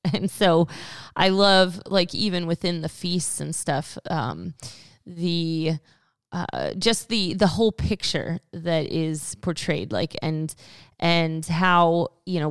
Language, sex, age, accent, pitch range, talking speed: English, female, 20-39, American, 155-180 Hz, 135 wpm